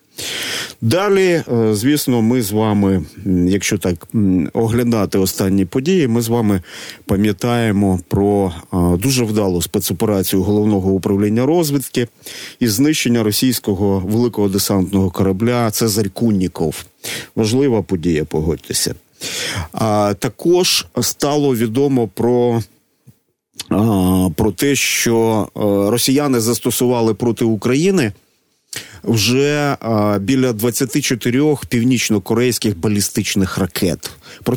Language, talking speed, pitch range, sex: Ukrainian, 90 wpm, 100-125 Hz, male